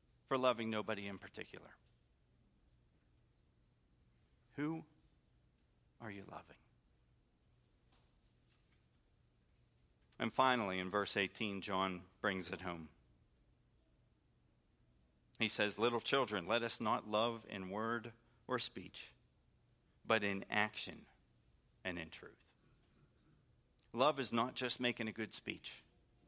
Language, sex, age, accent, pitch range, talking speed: English, male, 40-59, American, 95-115 Hz, 100 wpm